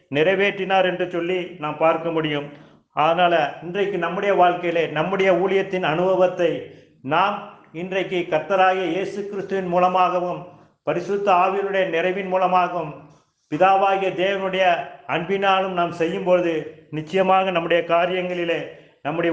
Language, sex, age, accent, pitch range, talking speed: Tamil, male, 50-69, native, 165-185 Hz, 100 wpm